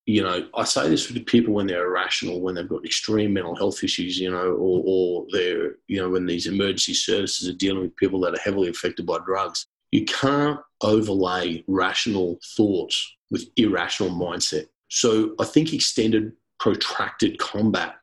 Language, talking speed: English, 175 wpm